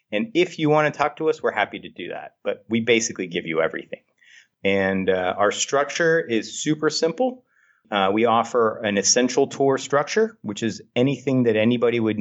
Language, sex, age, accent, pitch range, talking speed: English, male, 30-49, American, 105-135 Hz, 190 wpm